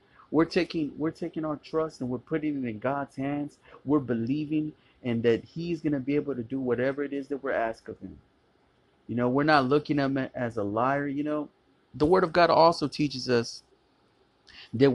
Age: 30-49